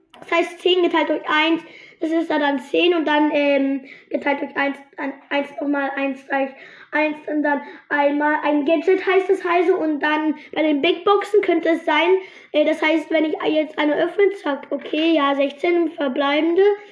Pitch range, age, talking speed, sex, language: 295-345 Hz, 20-39, 180 wpm, female, German